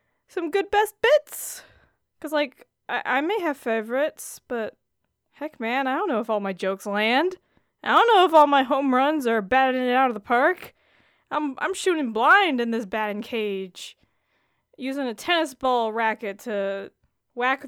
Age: 20-39